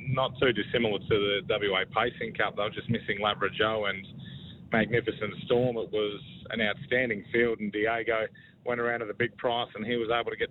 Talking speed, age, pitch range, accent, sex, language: 205 wpm, 30-49, 105-120 Hz, Australian, male, English